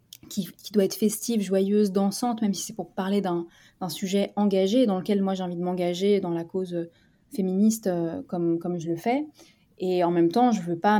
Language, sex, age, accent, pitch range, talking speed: French, female, 20-39, French, 180-210 Hz, 220 wpm